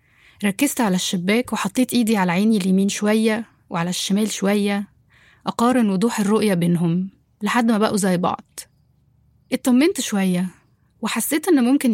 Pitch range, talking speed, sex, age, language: 195-240 Hz, 130 wpm, female, 20-39, Arabic